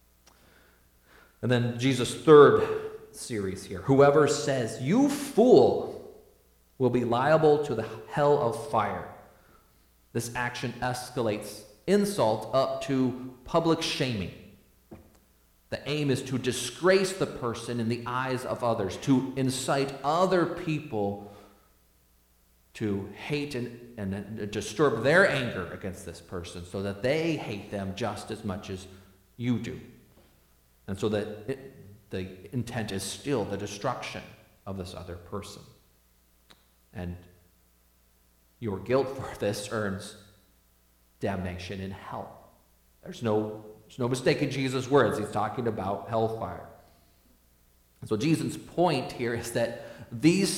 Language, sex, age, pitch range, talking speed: English, male, 40-59, 95-135 Hz, 120 wpm